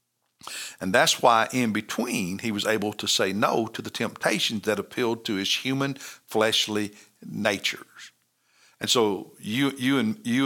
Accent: American